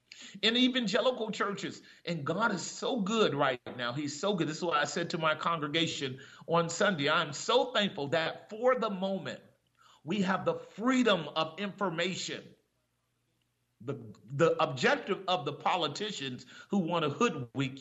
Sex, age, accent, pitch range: male, 40-59, American, 165-225 Hz